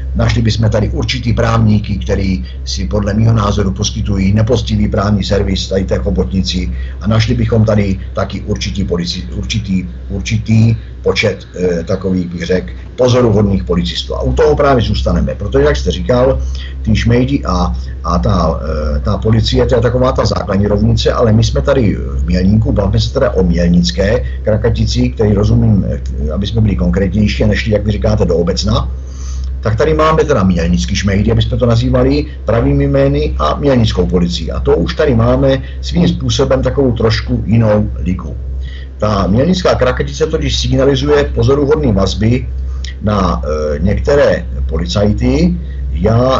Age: 50-69